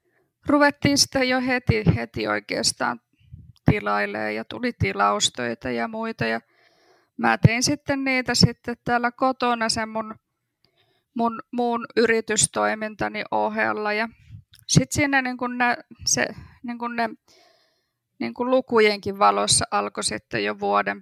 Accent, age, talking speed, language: native, 20-39, 125 wpm, Finnish